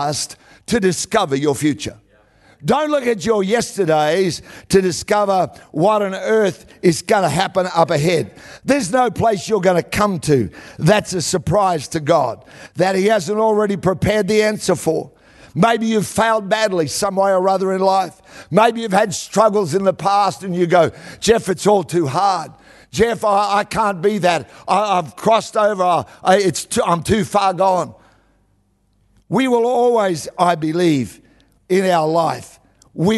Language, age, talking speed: English, 50-69, 160 wpm